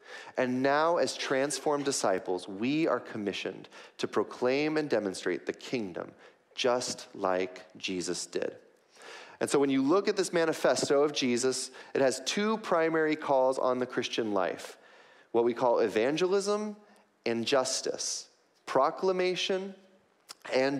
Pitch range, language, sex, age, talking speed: 120-185 Hz, English, male, 30-49, 130 wpm